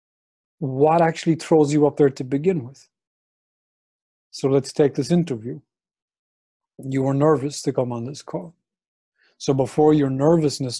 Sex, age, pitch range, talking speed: male, 30-49, 130-150 Hz, 145 wpm